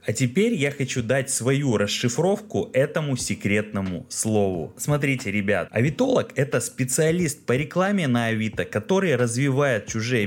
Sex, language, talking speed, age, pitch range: male, Russian, 130 wpm, 20-39, 100-135 Hz